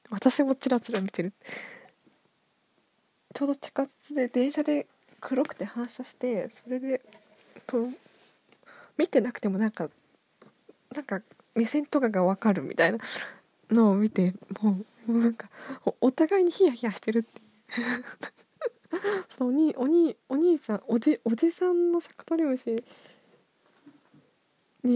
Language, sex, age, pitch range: Japanese, female, 20-39, 225-320 Hz